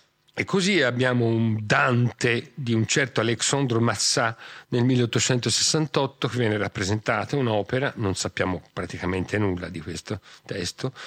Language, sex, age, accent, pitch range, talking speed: Italian, male, 40-59, native, 110-140 Hz, 125 wpm